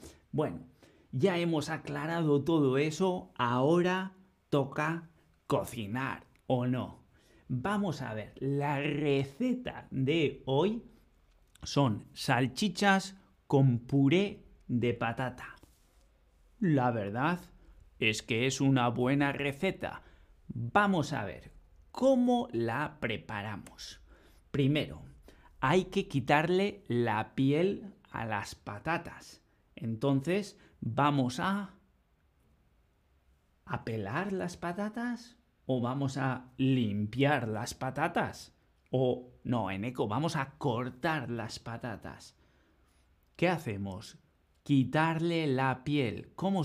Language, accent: Spanish, Spanish